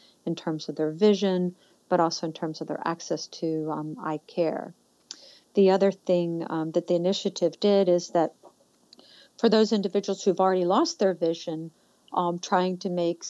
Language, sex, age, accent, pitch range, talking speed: English, female, 50-69, American, 165-190 Hz, 170 wpm